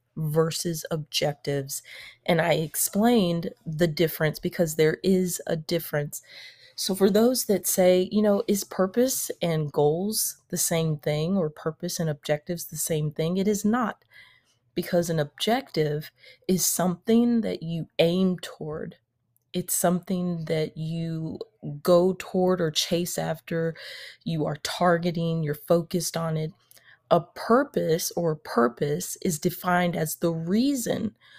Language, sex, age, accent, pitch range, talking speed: English, female, 30-49, American, 150-185 Hz, 135 wpm